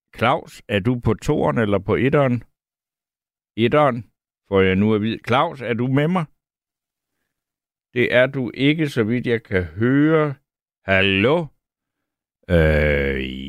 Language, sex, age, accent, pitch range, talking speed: Danish, male, 60-79, native, 105-135 Hz, 130 wpm